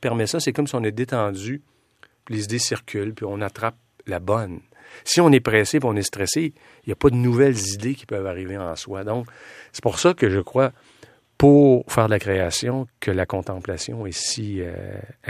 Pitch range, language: 90-120 Hz, French